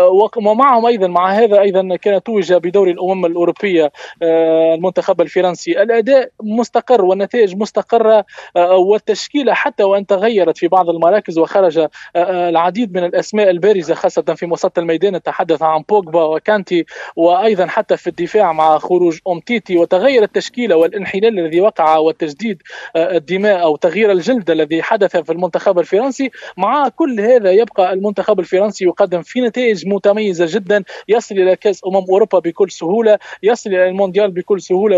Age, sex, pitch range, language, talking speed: 20-39, male, 175-215 Hz, Arabic, 140 wpm